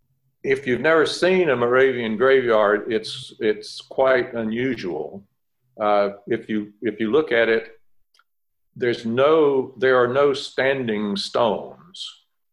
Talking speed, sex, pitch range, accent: 125 wpm, male, 105-125 Hz, American